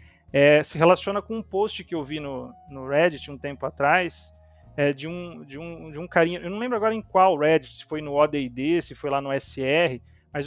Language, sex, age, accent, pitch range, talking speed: Portuguese, male, 30-49, Brazilian, 145-195 Hz, 230 wpm